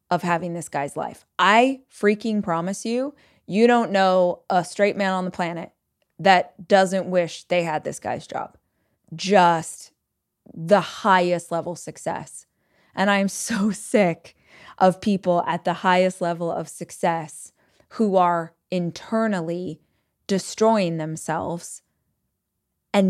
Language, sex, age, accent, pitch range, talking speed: English, female, 20-39, American, 175-220 Hz, 125 wpm